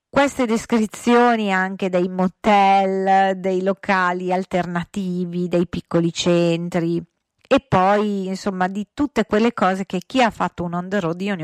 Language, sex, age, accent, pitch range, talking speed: Italian, female, 40-59, native, 170-200 Hz, 145 wpm